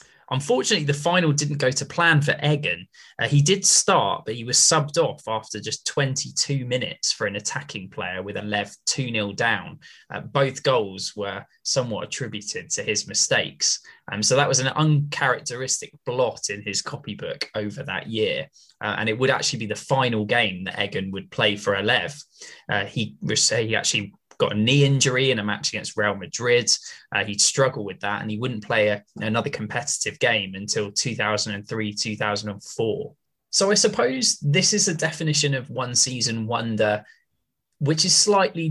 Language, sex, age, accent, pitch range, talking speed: English, male, 10-29, British, 110-155 Hz, 175 wpm